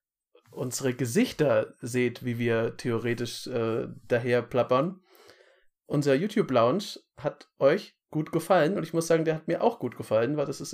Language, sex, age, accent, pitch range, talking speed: German, male, 30-49, German, 125-165 Hz, 155 wpm